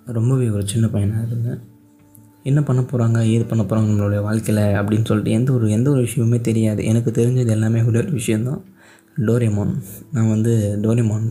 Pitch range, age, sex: 105-120 Hz, 20-39, male